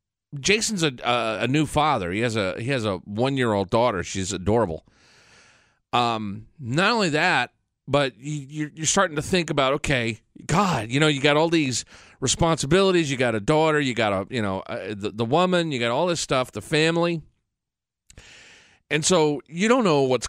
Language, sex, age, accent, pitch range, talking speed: English, male, 40-59, American, 120-165 Hz, 190 wpm